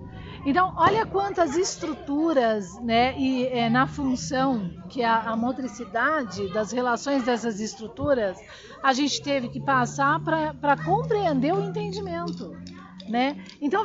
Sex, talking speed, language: female, 120 wpm, Portuguese